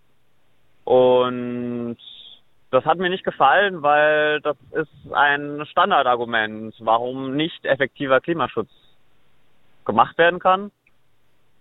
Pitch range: 115-145 Hz